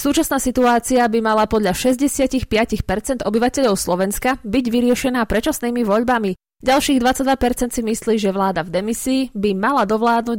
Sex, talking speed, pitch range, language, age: female, 135 wpm, 200-250 Hz, Slovak, 20-39